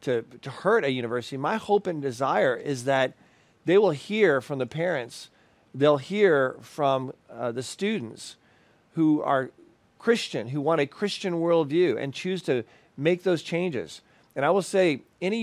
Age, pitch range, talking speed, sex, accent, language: 40-59, 135-180 Hz, 165 wpm, male, American, English